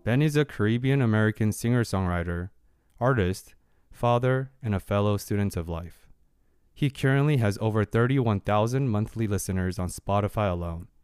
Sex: male